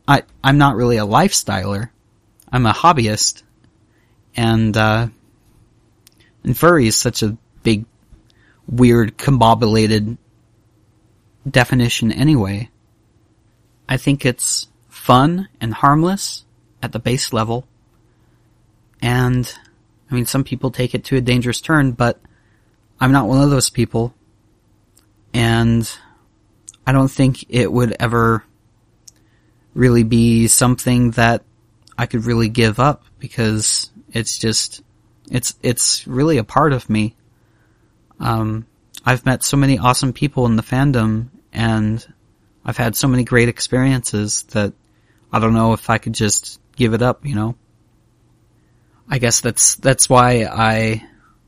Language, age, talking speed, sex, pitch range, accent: English, 30-49, 130 wpm, male, 110-125 Hz, American